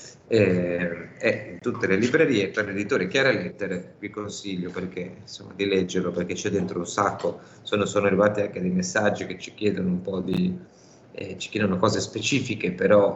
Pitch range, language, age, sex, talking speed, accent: 90-105 Hz, Italian, 30-49, male, 180 wpm, native